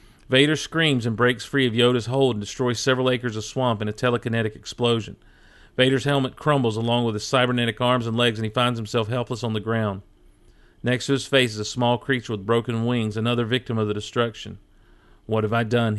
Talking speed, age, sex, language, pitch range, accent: 210 wpm, 40-59, male, English, 110-130 Hz, American